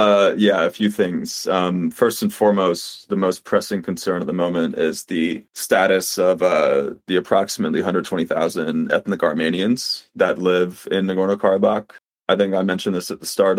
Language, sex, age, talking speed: English, male, 30-49, 170 wpm